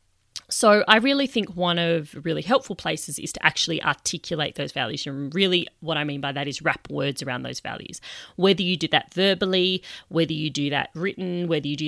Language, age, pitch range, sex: English, 30-49, 150-180 Hz, female